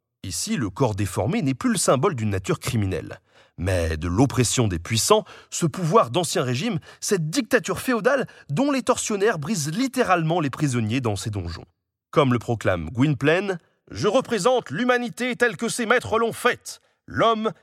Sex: male